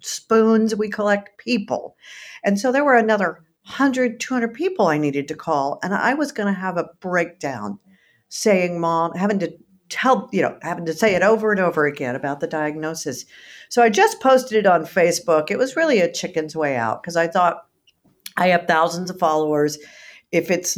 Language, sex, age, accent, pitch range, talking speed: English, female, 50-69, American, 155-210 Hz, 190 wpm